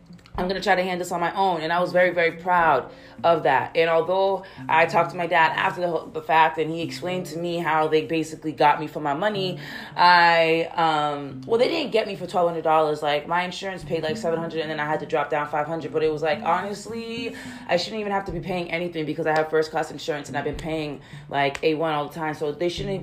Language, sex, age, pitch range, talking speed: English, female, 20-39, 155-180 Hz, 250 wpm